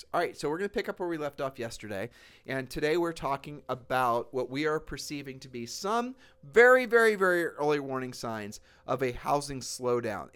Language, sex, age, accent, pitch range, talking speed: English, male, 40-59, American, 115-150 Hz, 205 wpm